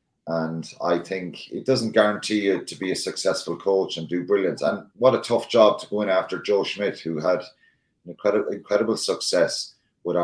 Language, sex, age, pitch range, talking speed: English, male, 30-49, 85-115 Hz, 190 wpm